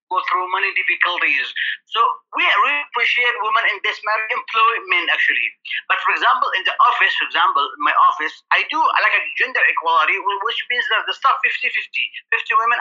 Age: 30-49